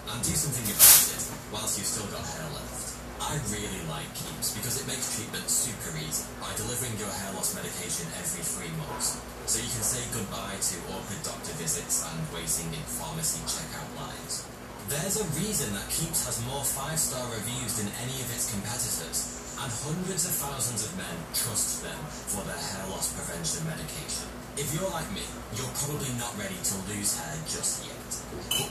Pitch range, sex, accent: 85-135 Hz, male, British